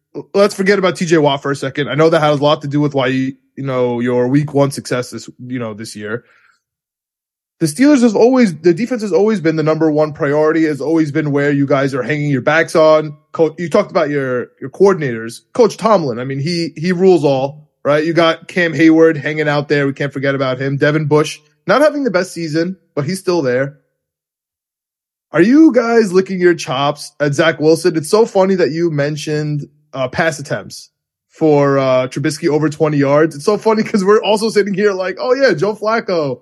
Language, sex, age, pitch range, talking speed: English, male, 20-39, 145-180 Hz, 215 wpm